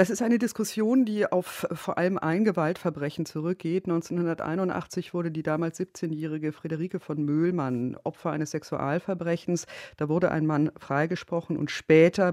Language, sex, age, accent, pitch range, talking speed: German, female, 40-59, German, 155-190 Hz, 140 wpm